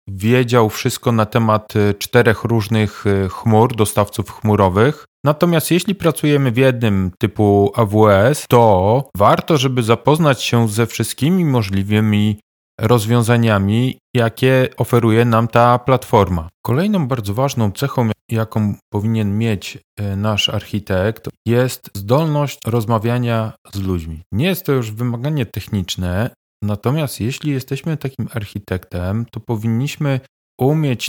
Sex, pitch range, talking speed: male, 105-130 Hz, 110 wpm